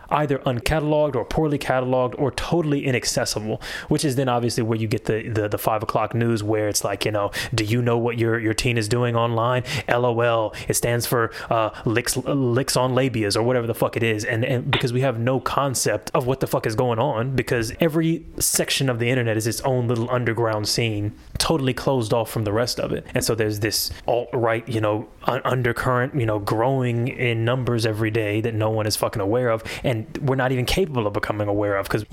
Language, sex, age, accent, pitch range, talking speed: English, male, 20-39, American, 110-130 Hz, 220 wpm